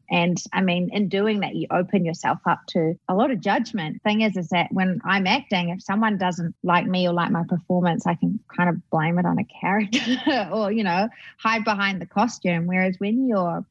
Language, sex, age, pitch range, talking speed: English, female, 20-39, 175-210 Hz, 220 wpm